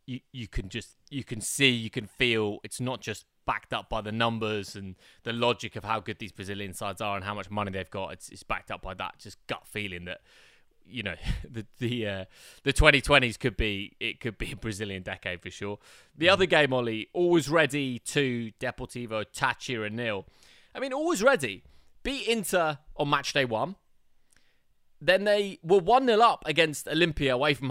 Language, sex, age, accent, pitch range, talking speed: English, male, 20-39, British, 110-145 Hz, 195 wpm